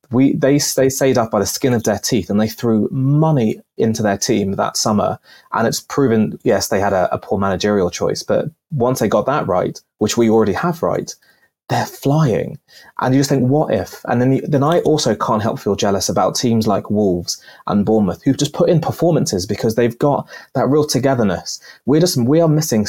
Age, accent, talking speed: 20-39, British, 210 wpm